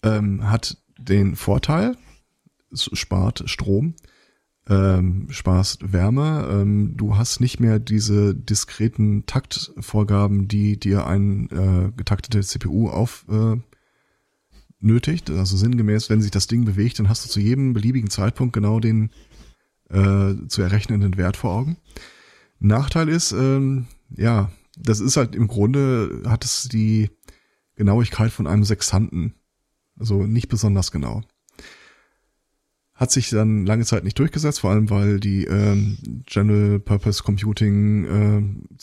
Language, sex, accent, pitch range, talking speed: German, male, German, 100-120 Hz, 130 wpm